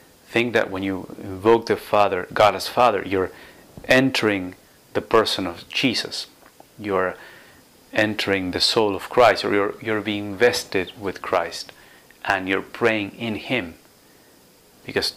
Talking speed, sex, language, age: 140 wpm, male, English, 30-49